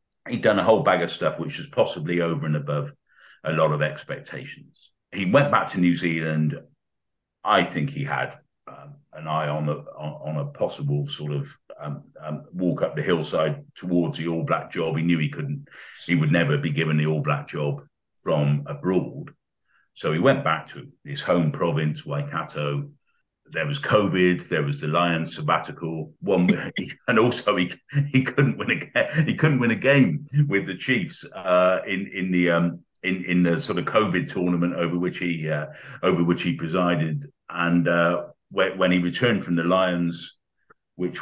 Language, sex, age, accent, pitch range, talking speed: English, male, 50-69, British, 75-90 Hz, 185 wpm